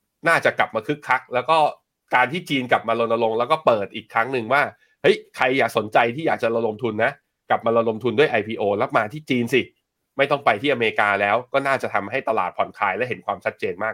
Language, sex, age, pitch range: Thai, male, 20-39, 110-155 Hz